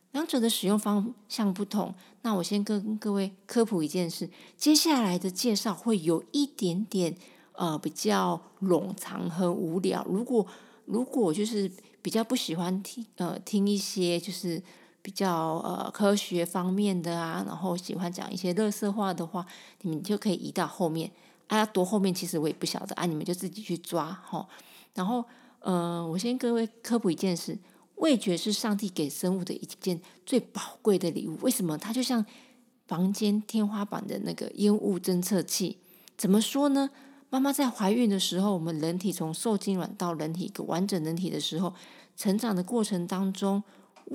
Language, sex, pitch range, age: Chinese, female, 175-215 Hz, 40-59